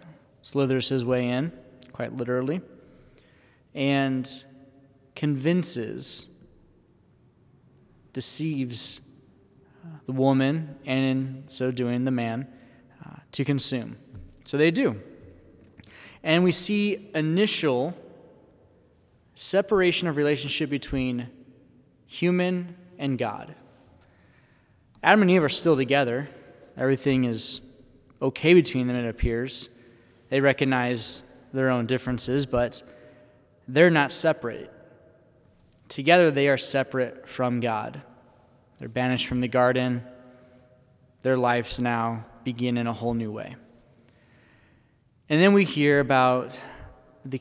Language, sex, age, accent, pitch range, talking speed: English, male, 20-39, American, 120-140 Hz, 105 wpm